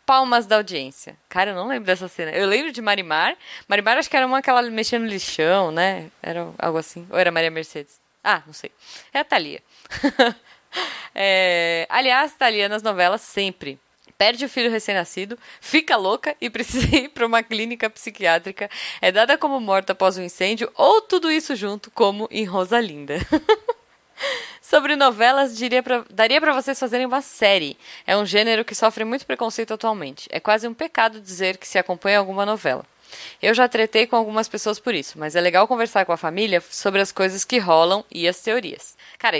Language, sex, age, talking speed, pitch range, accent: Portuguese, female, 10-29, 185 wpm, 185-245 Hz, Brazilian